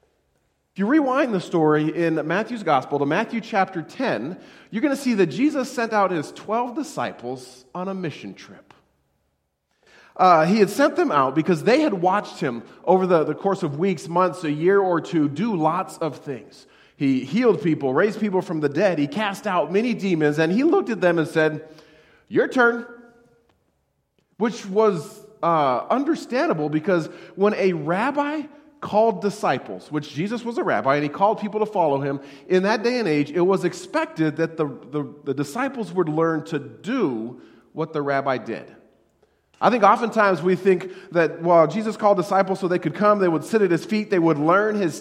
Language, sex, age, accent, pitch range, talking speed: English, male, 40-59, American, 155-210 Hz, 190 wpm